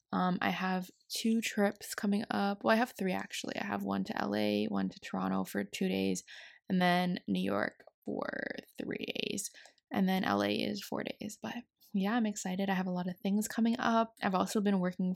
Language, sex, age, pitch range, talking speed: English, female, 20-39, 185-225 Hz, 205 wpm